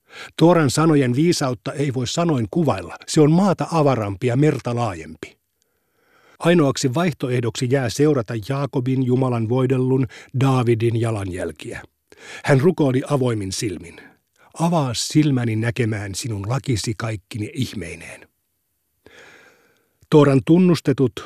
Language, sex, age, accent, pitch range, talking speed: Finnish, male, 50-69, native, 115-145 Hz, 100 wpm